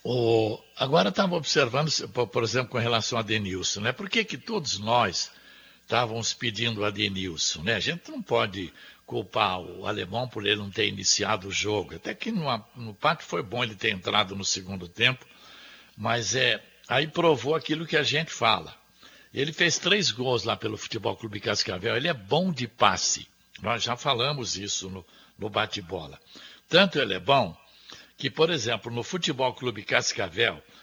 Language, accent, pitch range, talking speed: Portuguese, Brazilian, 110-150 Hz, 175 wpm